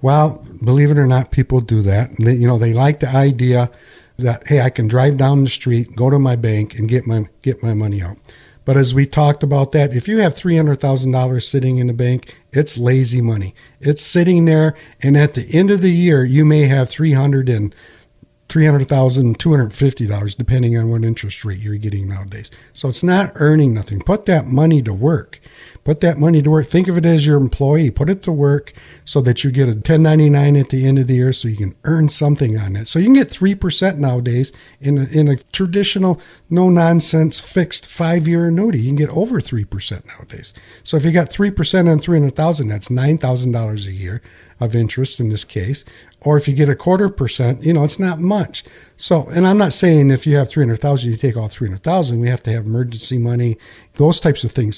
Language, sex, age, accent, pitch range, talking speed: English, male, 50-69, American, 120-155 Hz, 220 wpm